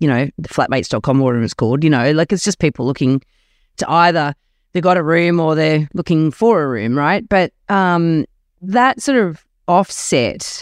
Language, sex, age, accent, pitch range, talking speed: English, female, 40-59, Australian, 155-195 Hz, 185 wpm